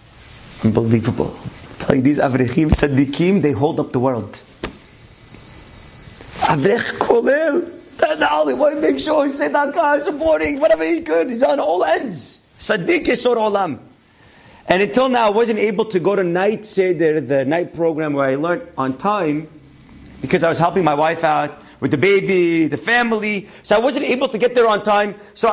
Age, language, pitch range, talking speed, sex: 40-59, English, 190-285 Hz, 160 wpm, male